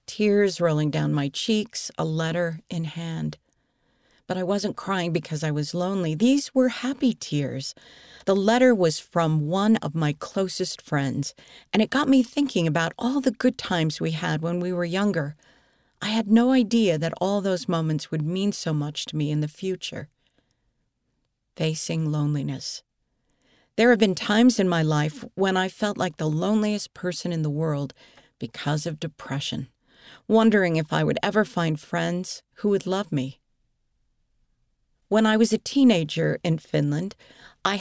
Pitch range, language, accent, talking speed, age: 155-205 Hz, English, American, 165 wpm, 50-69